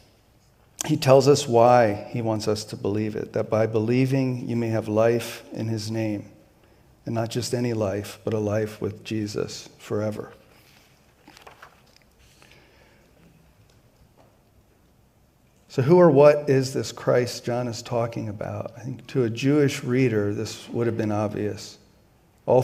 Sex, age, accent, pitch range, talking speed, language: male, 50-69, American, 105-125 Hz, 145 wpm, English